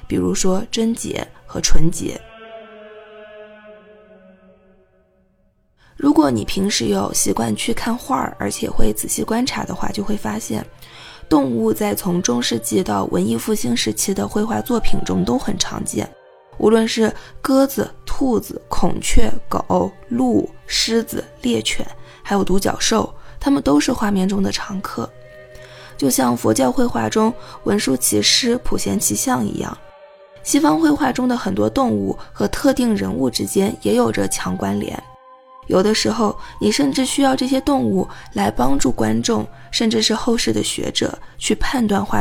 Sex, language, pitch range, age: female, Chinese, 170-265 Hz, 20-39